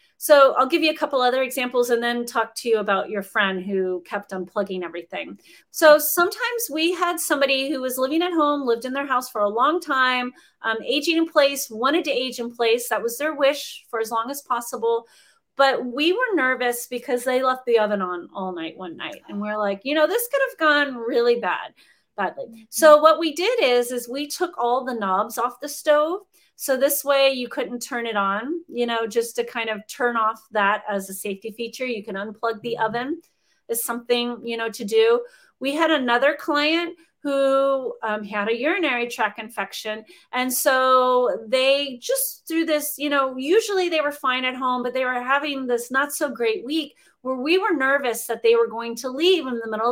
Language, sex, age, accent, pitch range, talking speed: English, female, 30-49, American, 230-295 Hz, 210 wpm